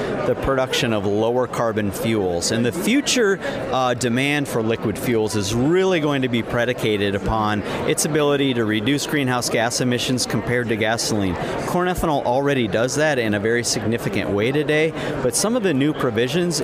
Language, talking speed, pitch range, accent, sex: English, 175 wpm, 115-150 Hz, American, male